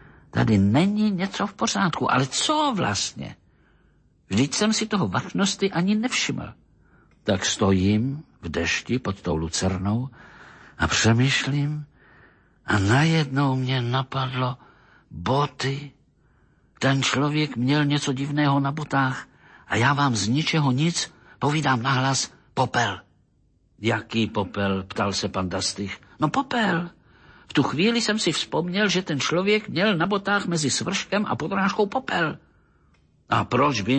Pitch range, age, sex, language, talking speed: 115-180 Hz, 50-69, male, Slovak, 130 wpm